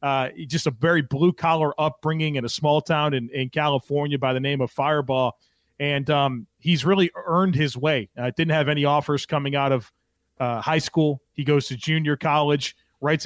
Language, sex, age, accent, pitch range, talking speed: English, male, 30-49, American, 140-160 Hz, 190 wpm